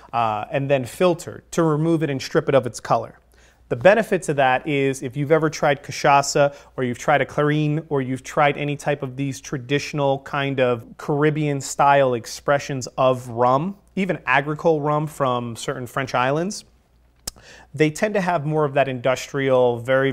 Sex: male